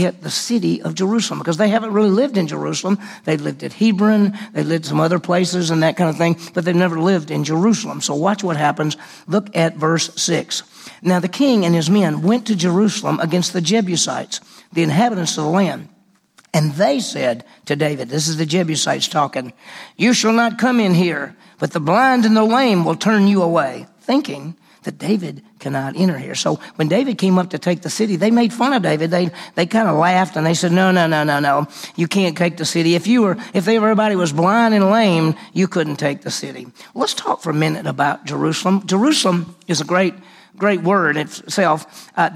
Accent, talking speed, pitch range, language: American, 210 wpm, 165-205 Hz, English